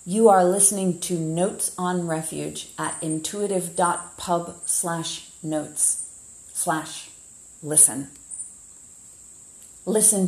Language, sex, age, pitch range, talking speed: English, female, 40-59, 145-170 Hz, 60 wpm